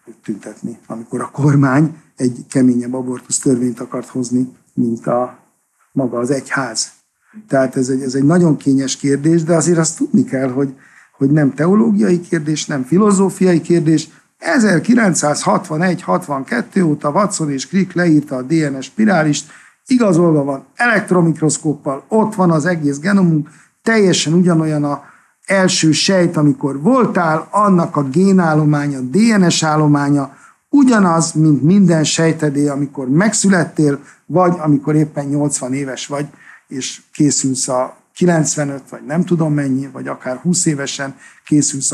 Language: Hungarian